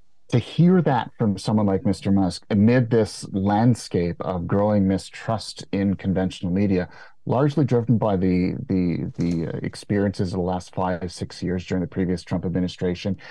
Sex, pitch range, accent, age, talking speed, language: male, 95-115 Hz, American, 30-49, 160 wpm, English